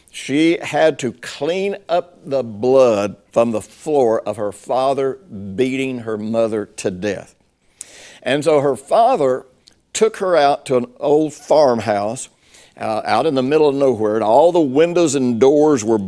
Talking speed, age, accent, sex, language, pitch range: 160 wpm, 60-79, American, male, English, 115-150 Hz